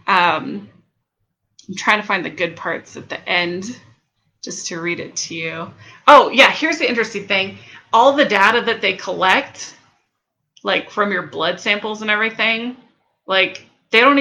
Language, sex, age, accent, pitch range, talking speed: English, female, 30-49, American, 180-220 Hz, 165 wpm